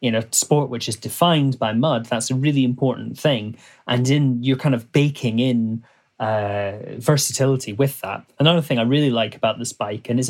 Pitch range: 115-140 Hz